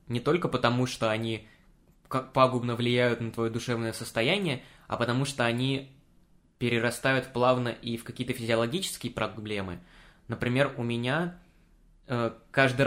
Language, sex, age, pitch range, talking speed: Russian, male, 20-39, 115-145 Hz, 125 wpm